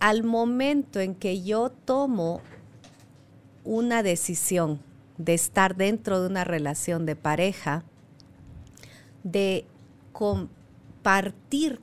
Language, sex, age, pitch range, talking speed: Spanish, female, 50-69, 165-230 Hz, 90 wpm